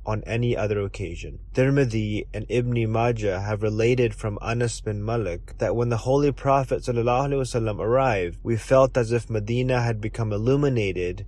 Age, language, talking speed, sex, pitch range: 20-39, English, 155 wpm, male, 105-120 Hz